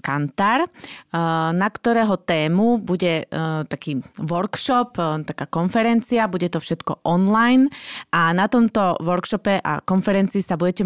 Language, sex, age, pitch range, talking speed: Slovak, female, 30-49, 165-195 Hz, 115 wpm